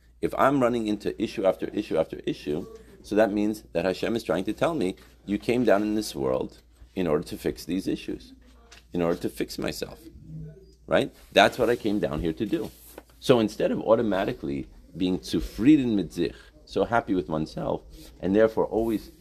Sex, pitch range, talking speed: male, 75-105 Hz, 185 wpm